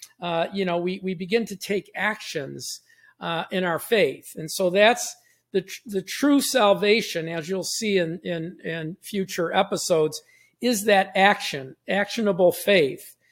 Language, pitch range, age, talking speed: English, 175-215 Hz, 50-69, 155 wpm